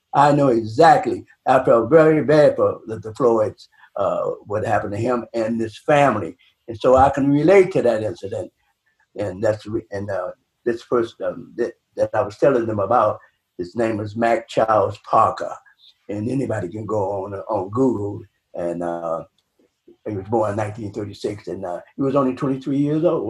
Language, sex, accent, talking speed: English, male, American, 185 wpm